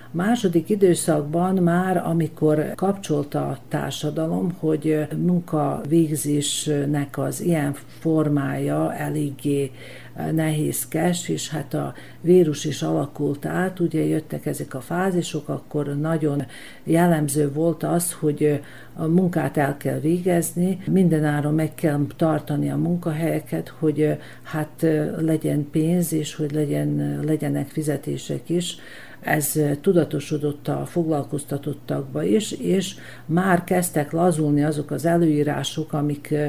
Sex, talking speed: female, 110 wpm